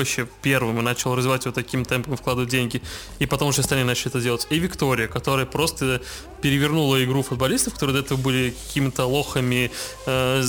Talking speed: 170 wpm